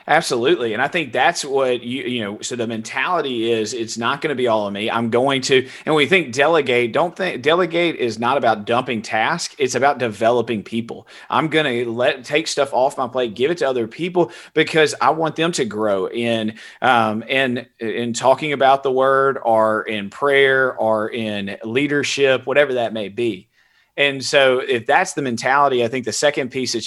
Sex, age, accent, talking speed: male, 30-49, American, 205 wpm